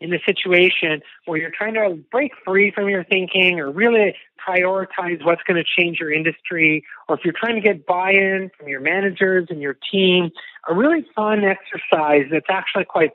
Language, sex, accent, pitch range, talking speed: English, male, American, 160-195 Hz, 190 wpm